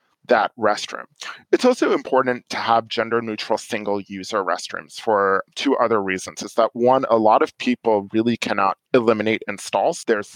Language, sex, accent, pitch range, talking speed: English, male, American, 105-125 Hz, 155 wpm